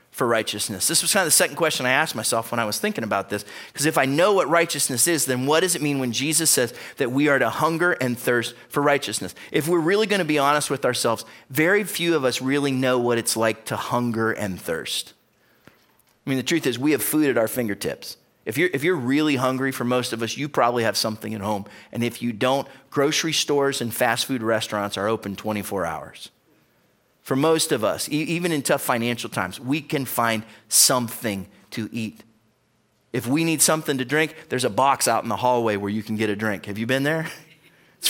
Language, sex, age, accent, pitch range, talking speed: English, male, 30-49, American, 115-155 Hz, 225 wpm